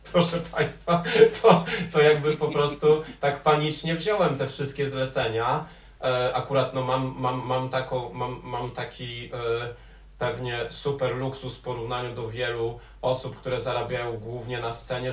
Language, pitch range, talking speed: Polish, 125-150 Hz, 120 wpm